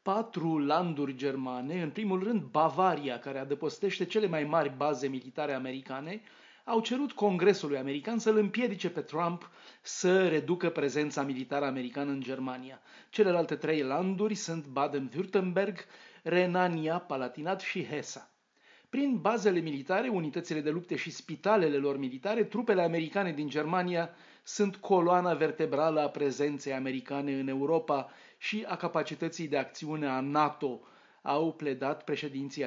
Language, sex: Romanian, male